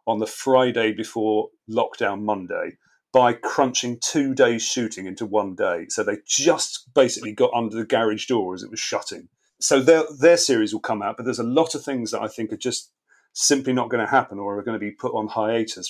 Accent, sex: British, male